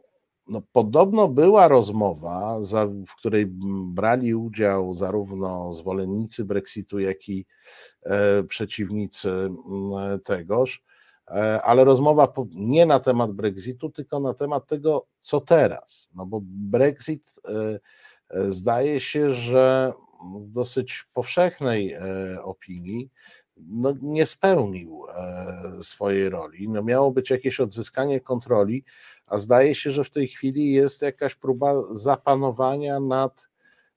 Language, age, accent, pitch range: Polish, 50-69, native, 100-130 Hz